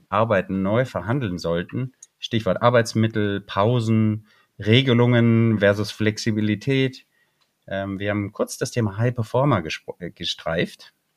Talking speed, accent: 95 wpm, German